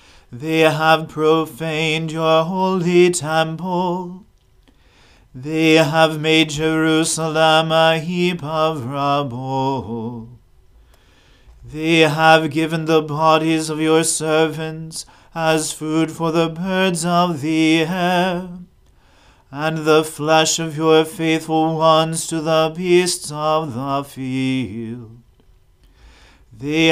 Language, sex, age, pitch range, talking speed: English, male, 40-59, 150-160 Hz, 100 wpm